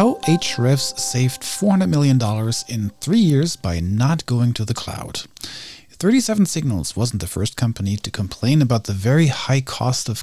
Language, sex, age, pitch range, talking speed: English, male, 40-59, 110-145 Hz, 165 wpm